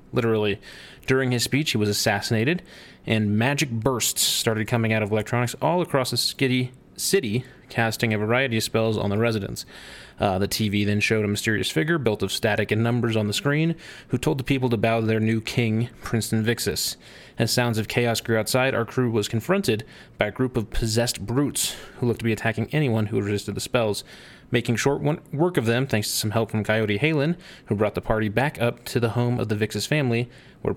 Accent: American